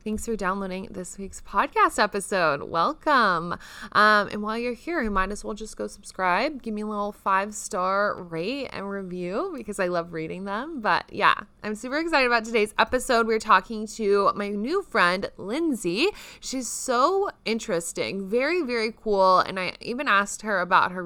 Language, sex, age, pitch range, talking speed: English, female, 20-39, 195-245 Hz, 175 wpm